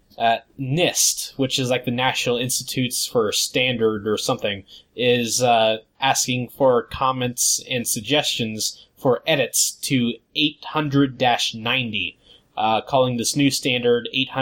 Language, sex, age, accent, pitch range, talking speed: English, male, 20-39, American, 115-135 Hz, 115 wpm